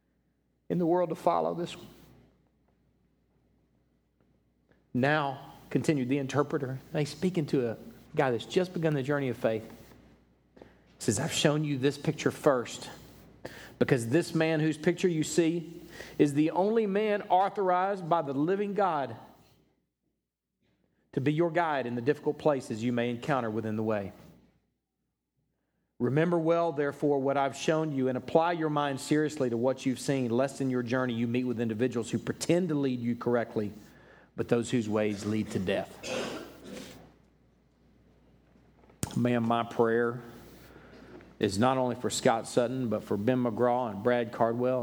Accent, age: American, 40-59